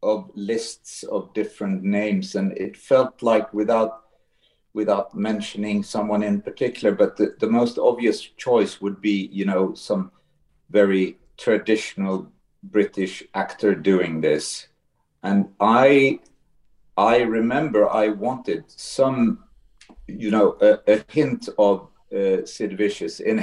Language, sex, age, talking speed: English, male, 50-69, 125 wpm